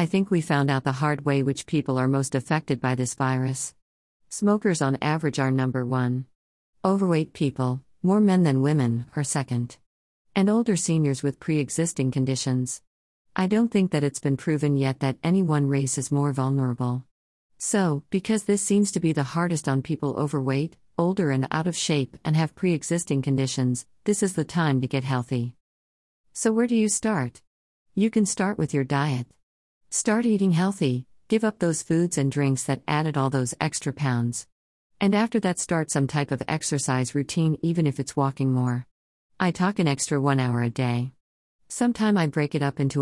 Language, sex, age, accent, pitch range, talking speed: English, female, 50-69, American, 130-170 Hz, 185 wpm